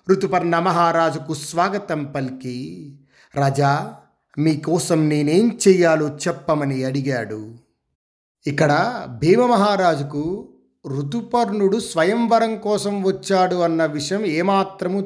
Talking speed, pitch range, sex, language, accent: 75 wpm, 150-195 Hz, male, Telugu, native